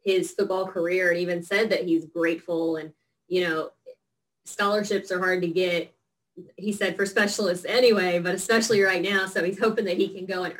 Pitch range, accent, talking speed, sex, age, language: 170-200 Hz, American, 190 wpm, female, 20-39, English